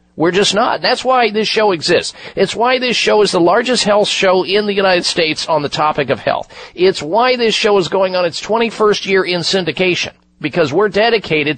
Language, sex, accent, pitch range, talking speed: English, male, American, 160-215 Hz, 210 wpm